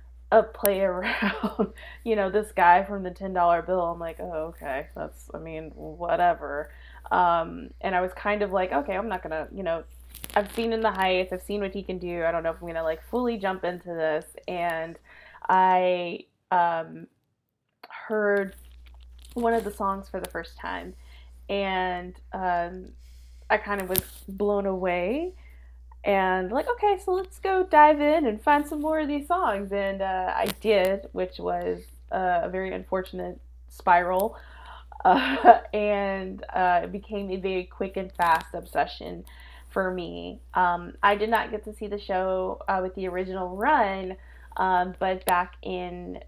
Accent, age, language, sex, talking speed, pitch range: American, 20-39, English, female, 170 wpm, 170-205 Hz